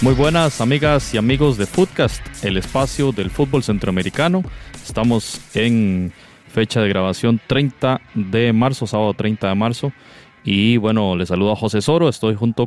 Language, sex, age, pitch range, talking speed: Spanish, male, 30-49, 100-130 Hz, 155 wpm